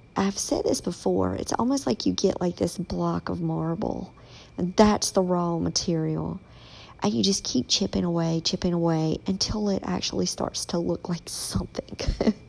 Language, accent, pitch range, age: English, American, 160-195 Hz, 50-69